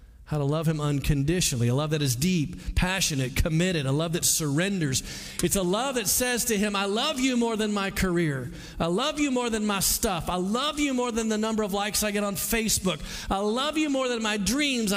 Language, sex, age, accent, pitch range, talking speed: English, male, 40-59, American, 140-220 Hz, 230 wpm